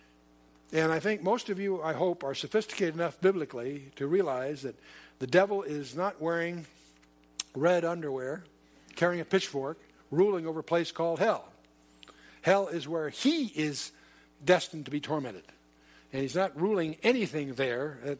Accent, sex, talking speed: American, male, 150 wpm